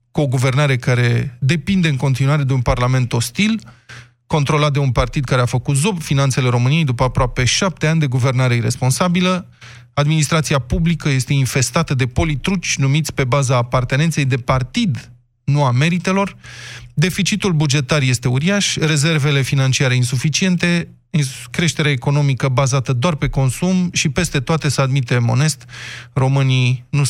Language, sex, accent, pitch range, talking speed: Romanian, male, native, 125-155 Hz, 140 wpm